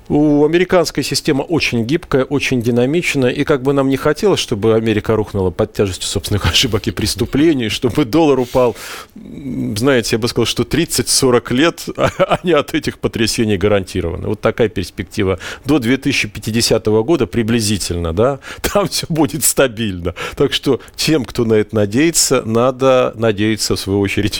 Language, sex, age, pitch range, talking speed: Russian, male, 40-59, 110-145 Hz, 150 wpm